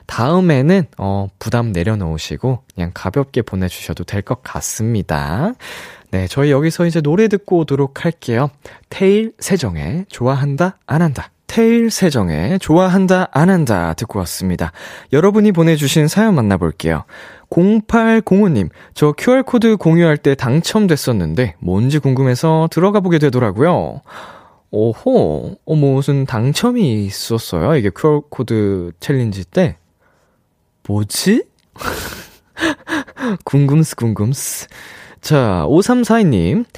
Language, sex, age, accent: Korean, male, 20-39, native